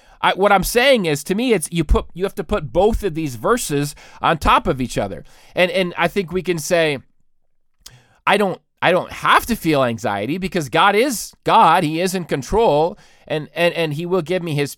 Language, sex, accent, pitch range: English, male, American, 150-200 Hz